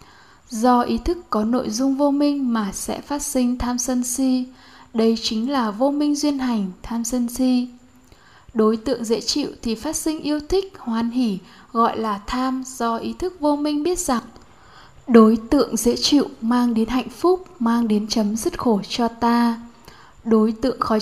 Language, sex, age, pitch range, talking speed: Vietnamese, female, 10-29, 225-275 Hz, 185 wpm